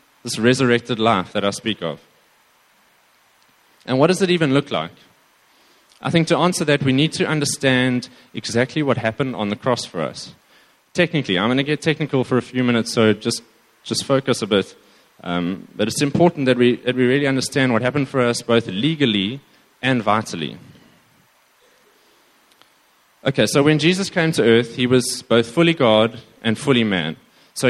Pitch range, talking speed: 115-150 Hz, 175 wpm